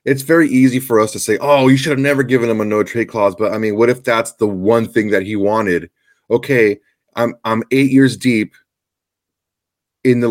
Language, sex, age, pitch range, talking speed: English, male, 30-49, 100-125 Hz, 215 wpm